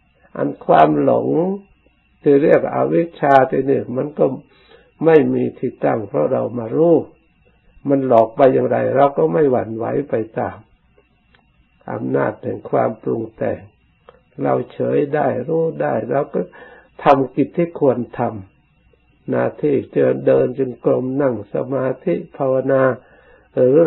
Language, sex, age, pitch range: Thai, male, 60-79, 105-140 Hz